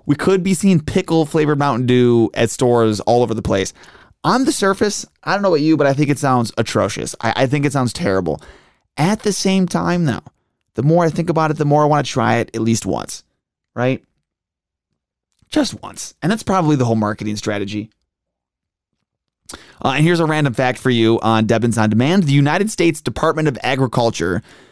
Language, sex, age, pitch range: English, male, 30-49, 115-155 Hz